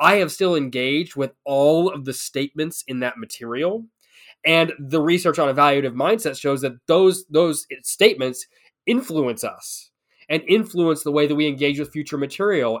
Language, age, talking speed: English, 20-39, 165 wpm